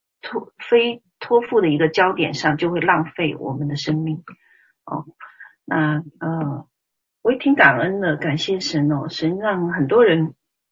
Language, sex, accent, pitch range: Chinese, female, native, 155-195 Hz